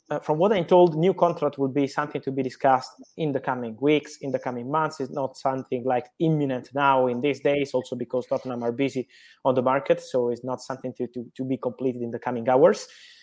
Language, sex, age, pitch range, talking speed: English, male, 20-39, 130-165 Hz, 230 wpm